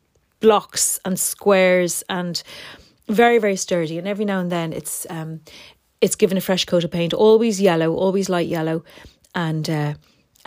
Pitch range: 160-195 Hz